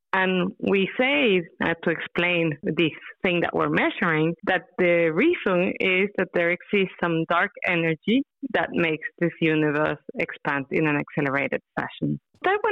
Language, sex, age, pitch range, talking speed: English, female, 30-49, 175-235 Hz, 145 wpm